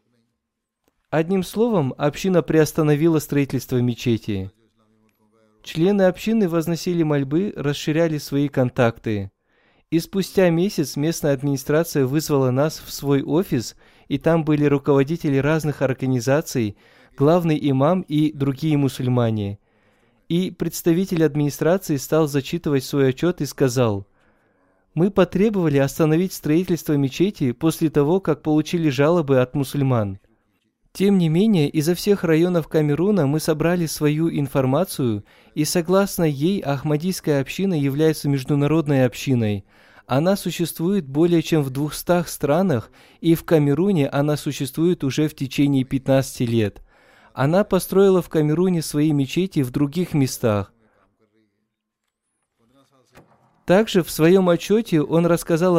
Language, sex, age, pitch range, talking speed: Russian, male, 20-39, 135-170 Hz, 115 wpm